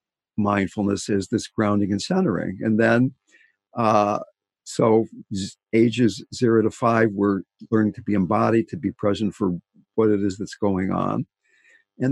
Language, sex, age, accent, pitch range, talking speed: English, male, 60-79, American, 105-135 Hz, 150 wpm